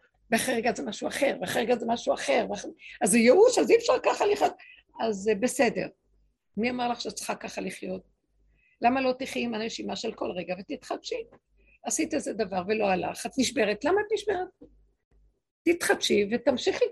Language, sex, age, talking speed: Hebrew, female, 50-69, 175 wpm